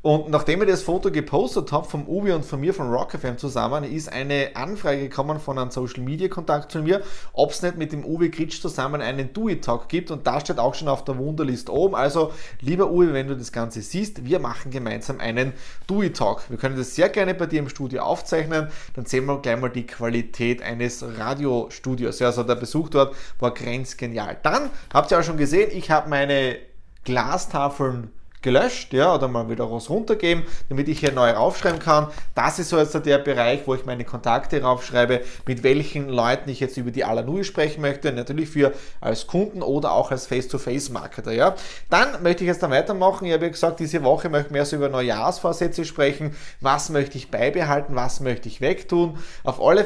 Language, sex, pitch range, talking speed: German, male, 125-160 Hz, 205 wpm